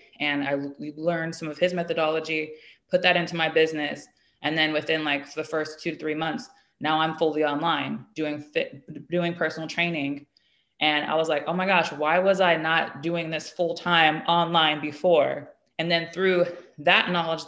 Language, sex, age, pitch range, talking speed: English, female, 20-39, 145-165 Hz, 180 wpm